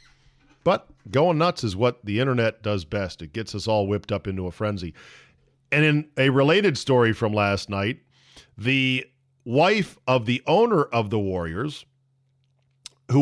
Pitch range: 110-145 Hz